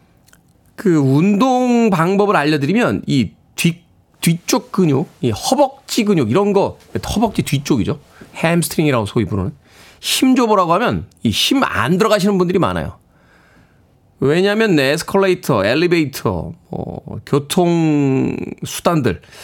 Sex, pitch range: male, 115-180 Hz